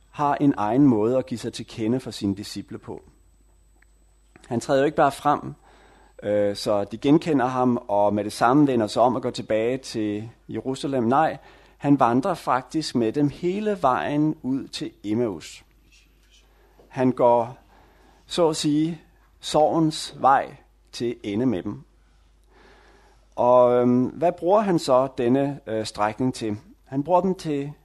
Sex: male